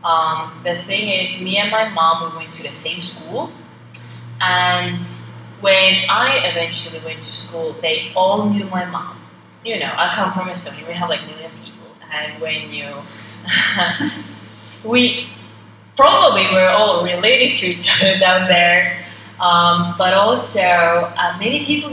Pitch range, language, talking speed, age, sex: 160-185 Hz, English, 155 wpm, 20-39, female